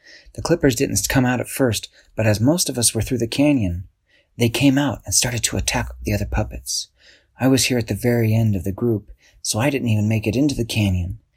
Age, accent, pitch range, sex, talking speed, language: 40-59, American, 100-135 Hz, male, 235 wpm, English